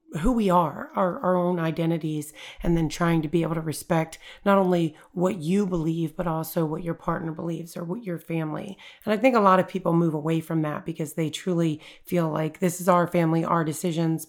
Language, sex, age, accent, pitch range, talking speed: English, female, 30-49, American, 165-190 Hz, 220 wpm